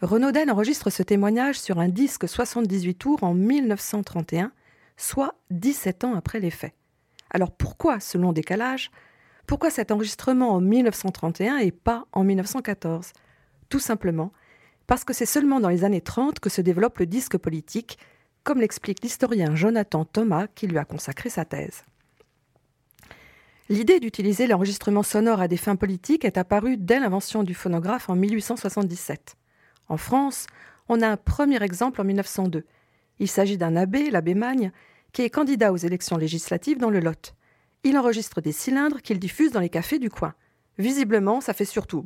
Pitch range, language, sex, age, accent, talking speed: 180-235 Hz, French, female, 40-59, French, 160 wpm